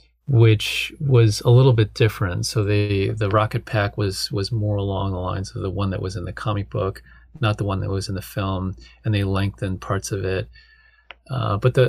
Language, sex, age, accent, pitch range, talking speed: English, male, 30-49, American, 95-120 Hz, 215 wpm